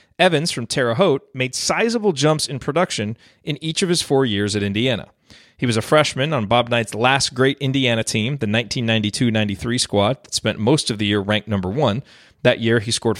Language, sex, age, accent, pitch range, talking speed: English, male, 30-49, American, 105-140 Hz, 200 wpm